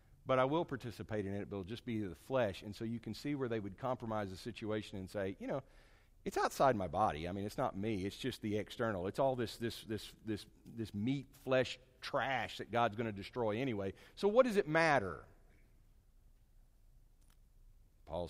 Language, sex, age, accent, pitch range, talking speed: English, male, 50-69, American, 100-130 Hz, 195 wpm